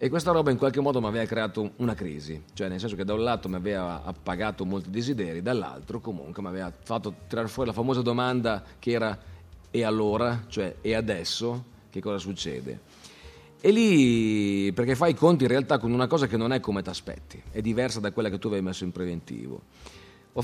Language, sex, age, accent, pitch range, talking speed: Italian, male, 40-59, native, 100-140 Hz, 210 wpm